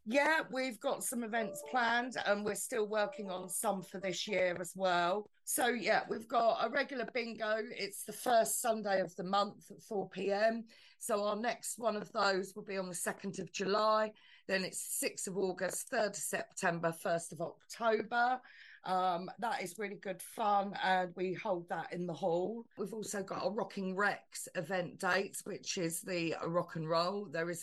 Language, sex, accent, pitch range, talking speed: English, female, British, 180-210 Hz, 185 wpm